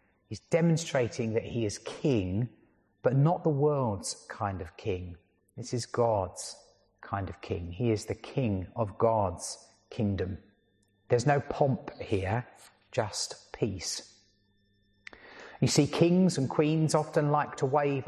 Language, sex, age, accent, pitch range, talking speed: English, male, 30-49, British, 105-145 Hz, 135 wpm